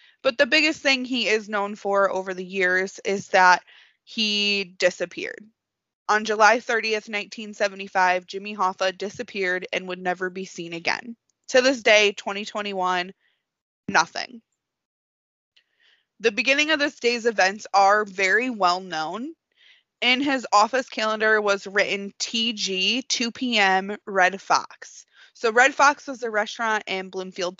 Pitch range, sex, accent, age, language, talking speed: 190-245 Hz, female, American, 20-39, English, 135 wpm